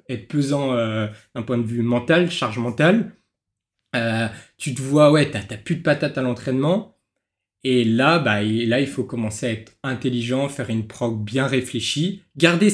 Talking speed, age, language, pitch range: 185 wpm, 20-39, French, 110-135 Hz